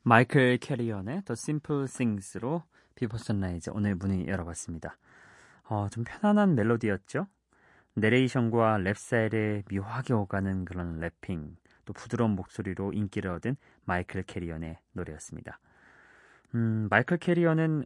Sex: male